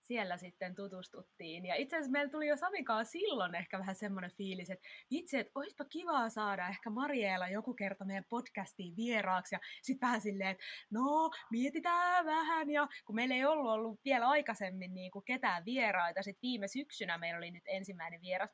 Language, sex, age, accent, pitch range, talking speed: Finnish, female, 20-39, native, 190-255 Hz, 175 wpm